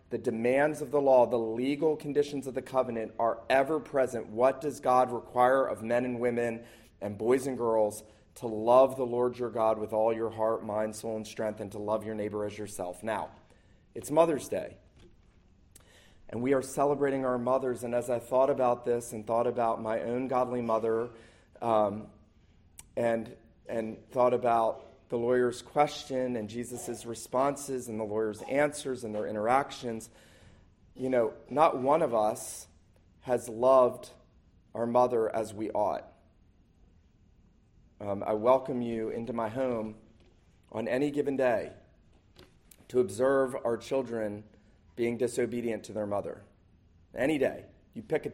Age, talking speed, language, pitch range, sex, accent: 30-49, 155 wpm, English, 105-130 Hz, male, American